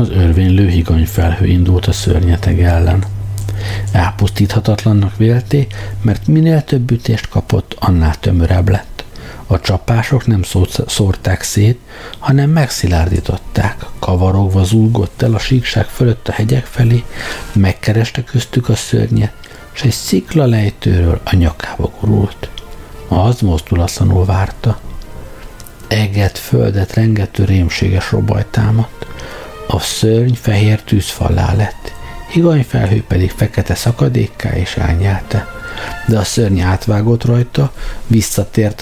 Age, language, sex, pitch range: 60-79, Hungarian, male, 95-120 Hz